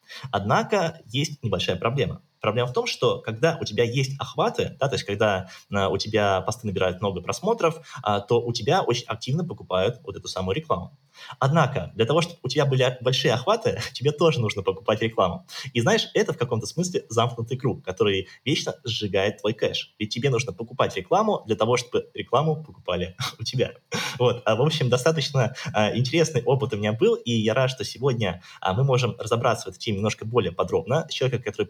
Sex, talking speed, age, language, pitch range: male, 180 wpm, 20-39, Russian, 105-140 Hz